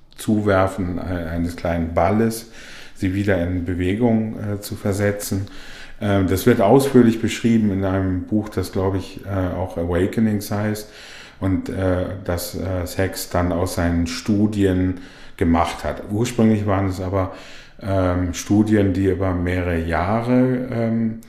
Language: German